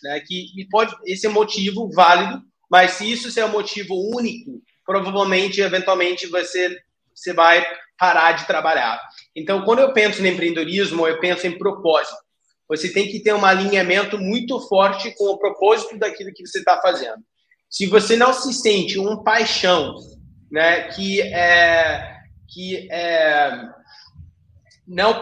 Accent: Brazilian